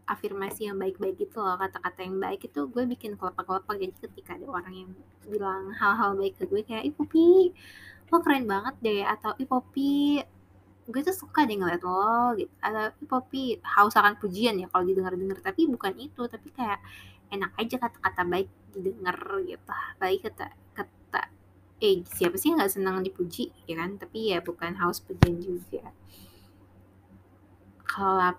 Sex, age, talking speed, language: female, 20-39, 165 wpm, Indonesian